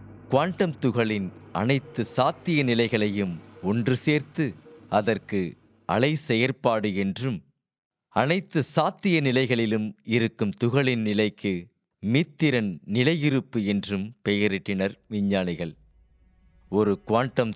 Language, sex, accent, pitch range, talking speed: Tamil, male, native, 100-130 Hz, 80 wpm